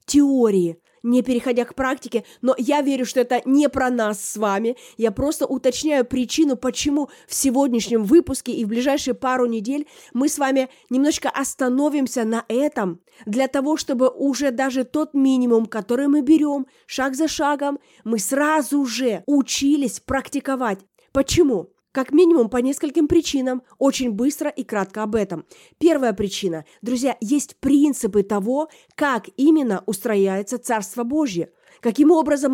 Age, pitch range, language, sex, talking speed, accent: 20-39, 235-285 Hz, Russian, female, 145 wpm, native